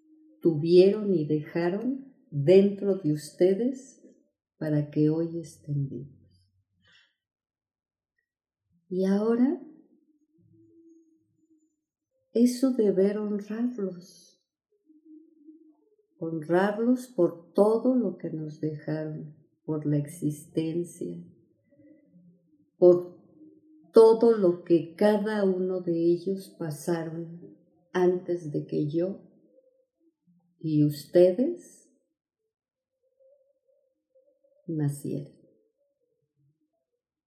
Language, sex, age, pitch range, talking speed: Spanish, female, 50-69, 165-275 Hz, 70 wpm